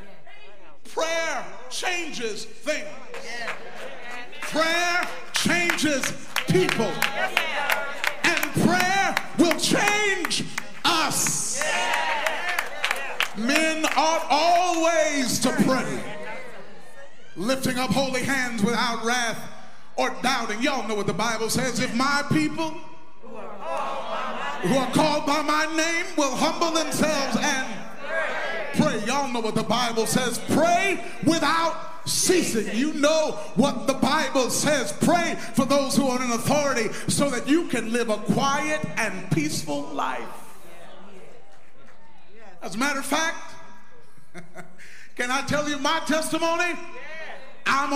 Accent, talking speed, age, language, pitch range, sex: American, 110 wpm, 40-59, English, 235-320 Hz, male